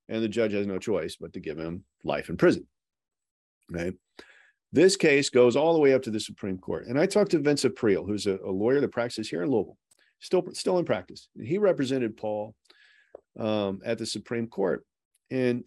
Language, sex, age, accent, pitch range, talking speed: English, male, 40-59, American, 105-155 Hz, 205 wpm